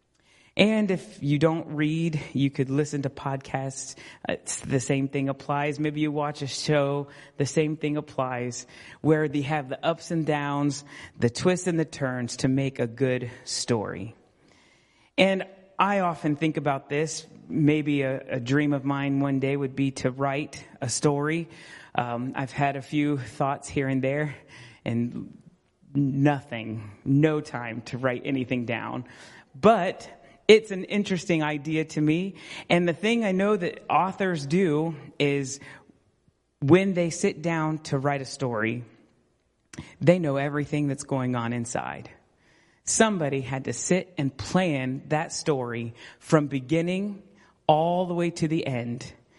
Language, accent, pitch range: English, American, 135-165 Hz